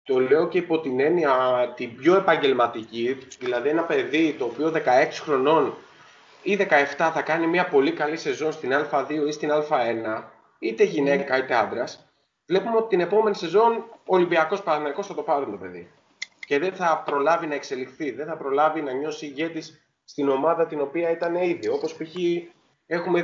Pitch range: 145-190 Hz